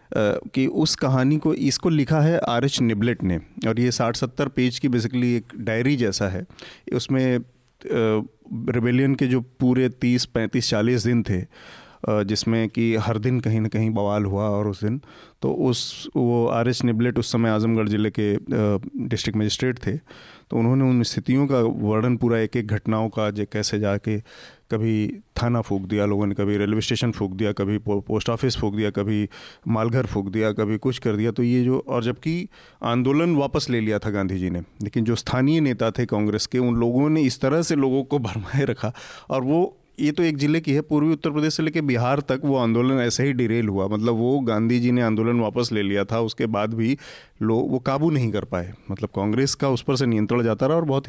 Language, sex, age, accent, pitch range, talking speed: Hindi, male, 30-49, native, 110-130 Hz, 205 wpm